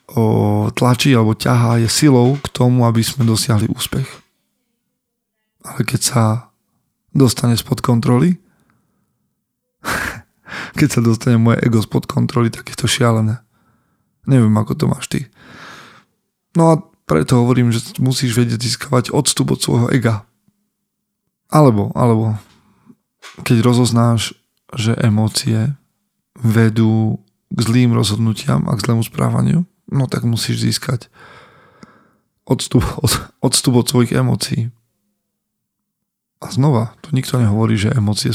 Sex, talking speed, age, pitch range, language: male, 120 wpm, 20-39, 110-130 Hz, Slovak